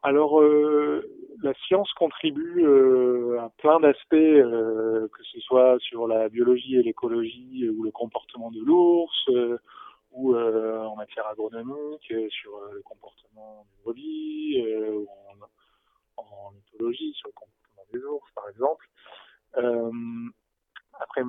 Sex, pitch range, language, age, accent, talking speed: male, 110-155 Hz, French, 30-49, French, 140 wpm